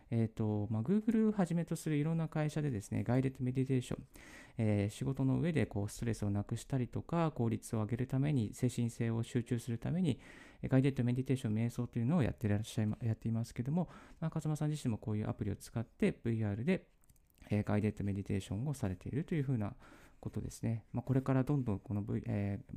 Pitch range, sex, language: 105-140 Hz, male, Japanese